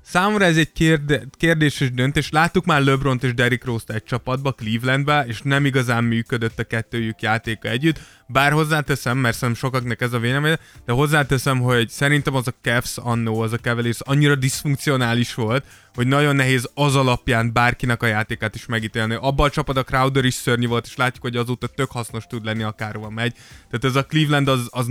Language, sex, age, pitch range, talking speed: Hungarian, male, 20-39, 120-140 Hz, 190 wpm